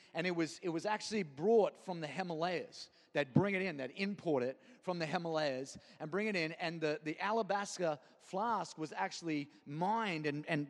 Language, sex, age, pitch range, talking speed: English, male, 30-49, 175-220 Hz, 190 wpm